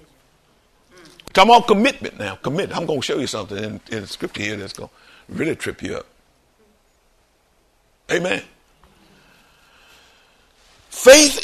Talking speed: 125 wpm